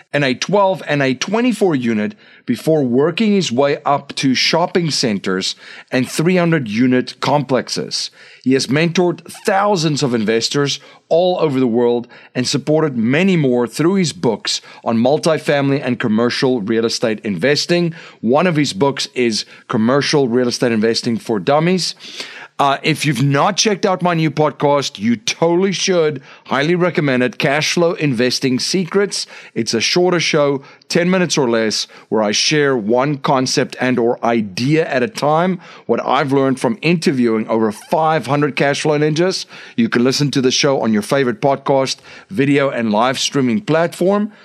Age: 40-59